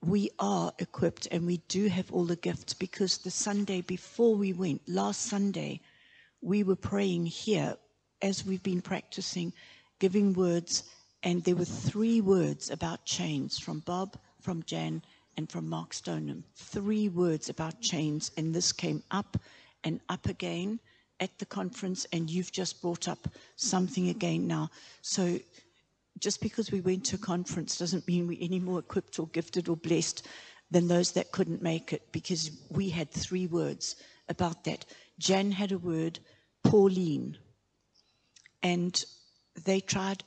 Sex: female